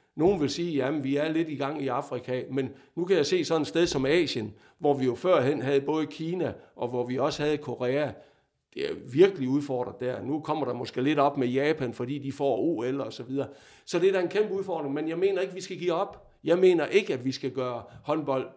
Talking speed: 250 wpm